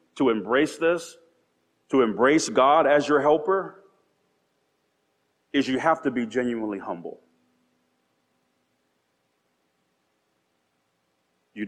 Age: 40-59